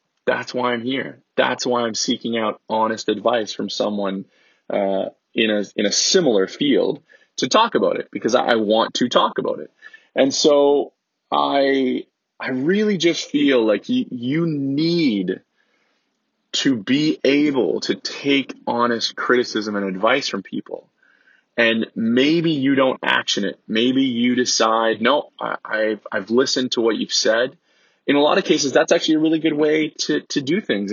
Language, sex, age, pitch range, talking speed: English, male, 20-39, 110-155 Hz, 170 wpm